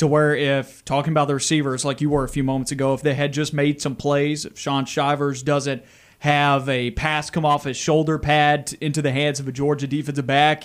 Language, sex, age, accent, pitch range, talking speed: English, male, 30-49, American, 140-155 Hz, 230 wpm